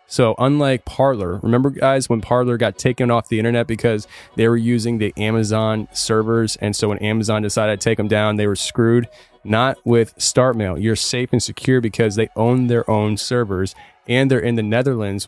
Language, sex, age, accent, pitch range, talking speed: English, male, 20-39, American, 105-120 Hz, 190 wpm